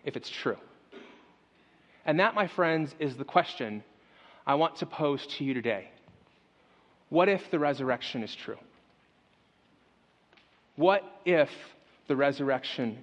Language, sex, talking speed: English, male, 125 wpm